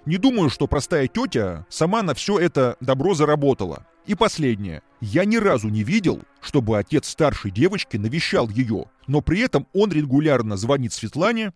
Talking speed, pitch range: 160 wpm, 120-175 Hz